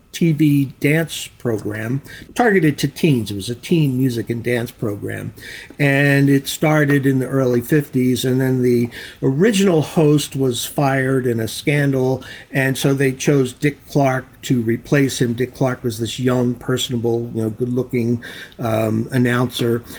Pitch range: 120-150 Hz